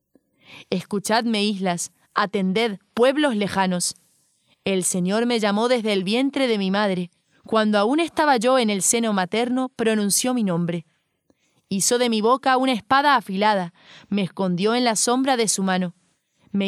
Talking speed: 150 wpm